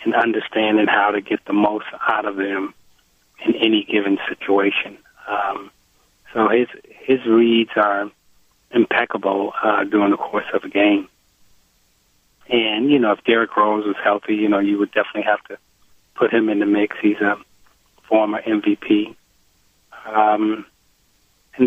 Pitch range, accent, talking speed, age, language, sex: 105-115 Hz, American, 150 wpm, 30-49, English, male